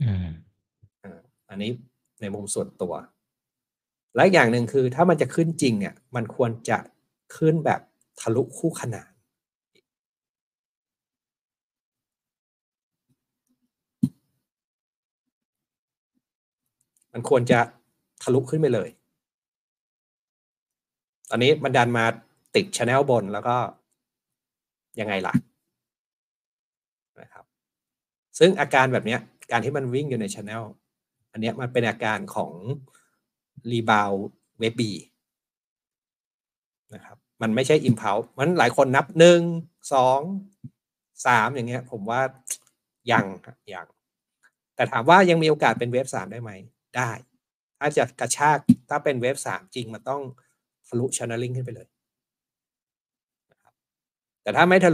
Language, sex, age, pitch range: Thai, male, 60-79, 115-145 Hz